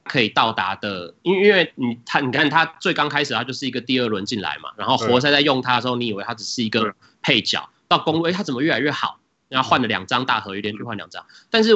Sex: male